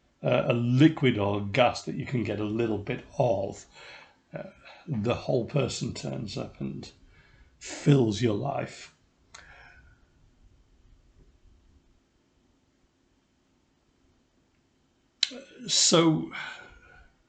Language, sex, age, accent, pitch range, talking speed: English, male, 50-69, British, 90-140 Hz, 85 wpm